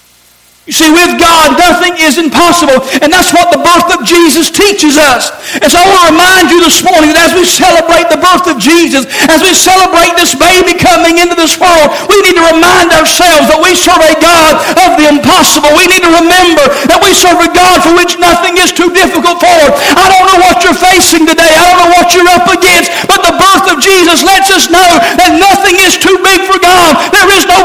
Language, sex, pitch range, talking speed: English, male, 345-390 Hz, 225 wpm